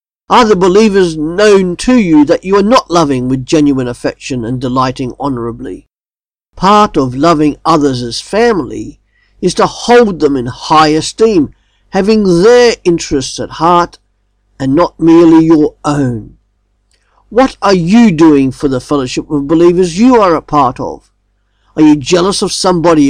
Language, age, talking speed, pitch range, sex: English, 50-69, 155 wpm, 135-195 Hz, male